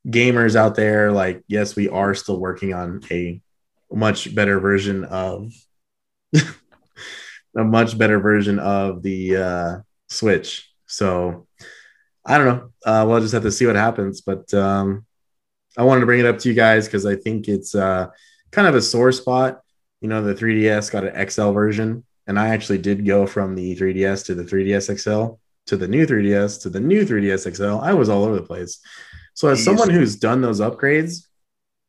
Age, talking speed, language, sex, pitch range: 20-39, 185 wpm, English, male, 95-115 Hz